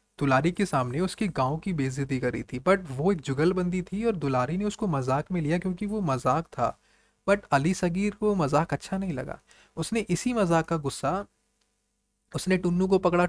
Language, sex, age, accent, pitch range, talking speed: Hindi, male, 30-49, native, 145-190 Hz, 190 wpm